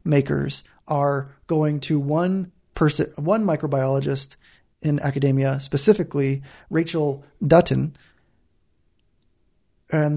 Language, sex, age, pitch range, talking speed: English, male, 20-39, 135-165 Hz, 85 wpm